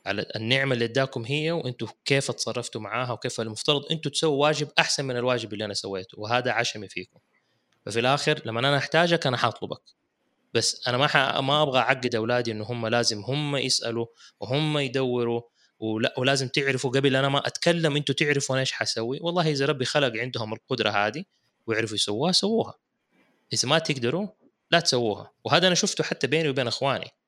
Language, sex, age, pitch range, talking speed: Arabic, male, 20-39, 115-145 Hz, 170 wpm